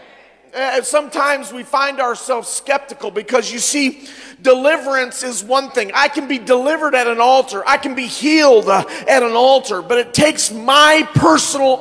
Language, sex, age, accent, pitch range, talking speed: English, male, 40-59, American, 225-275 Hz, 160 wpm